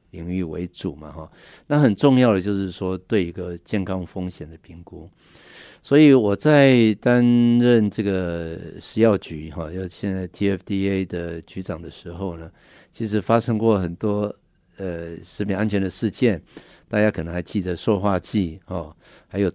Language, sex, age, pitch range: Chinese, male, 50-69, 90-115 Hz